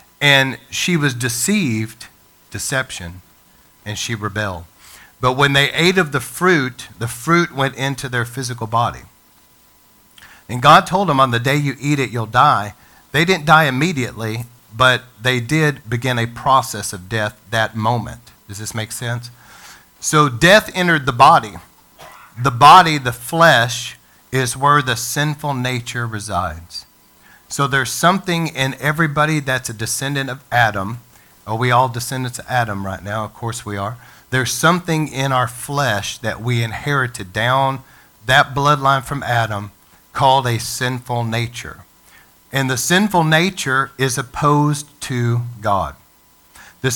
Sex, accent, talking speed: male, American, 145 wpm